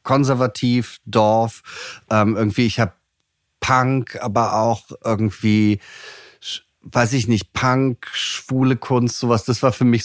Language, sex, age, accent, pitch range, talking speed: German, male, 30-49, German, 110-135 Hz, 120 wpm